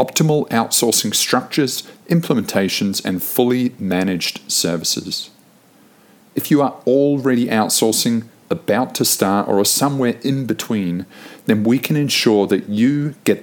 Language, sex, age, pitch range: English, male, 50-69, 105-135 Hz